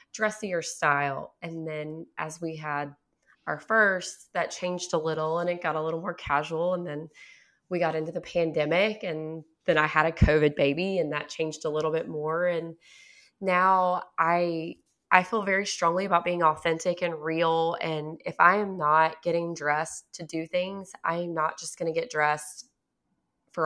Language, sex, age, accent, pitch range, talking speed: English, female, 20-39, American, 155-175 Hz, 180 wpm